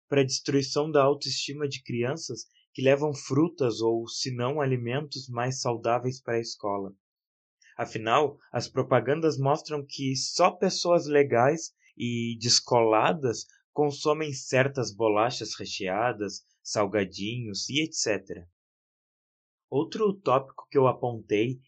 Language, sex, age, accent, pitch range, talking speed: Portuguese, male, 20-39, Brazilian, 115-155 Hz, 115 wpm